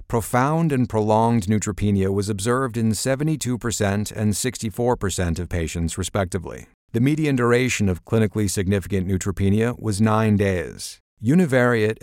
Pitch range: 95-120 Hz